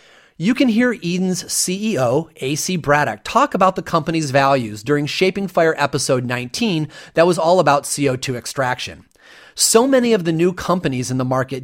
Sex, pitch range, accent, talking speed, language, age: male, 135-195 Hz, American, 165 wpm, English, 30-49